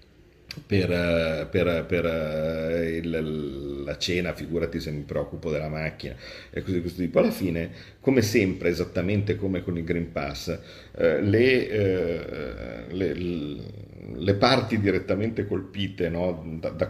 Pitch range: 85-105 Hz